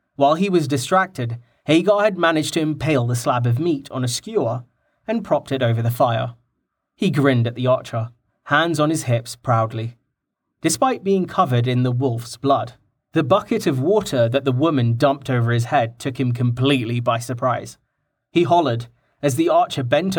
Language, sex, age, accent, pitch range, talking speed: English, male, 30-49, British, 120-165 Hz, 180 wpm